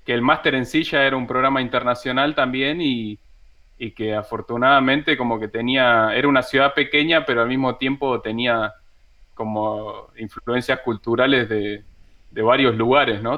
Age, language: 20-39, Spanish